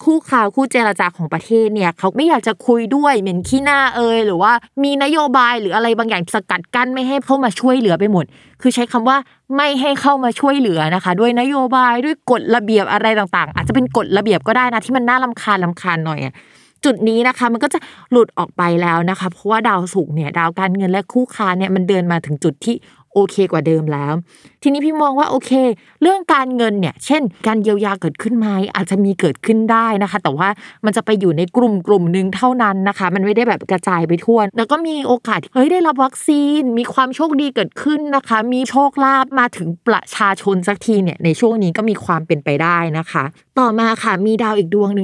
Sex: female